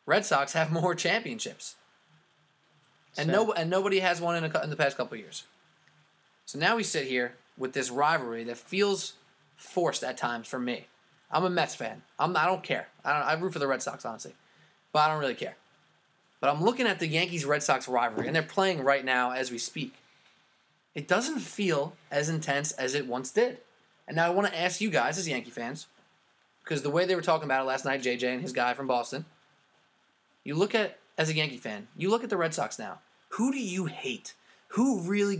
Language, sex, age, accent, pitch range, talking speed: English, male, 20-39, American, 140-190 Hz, 215 wpm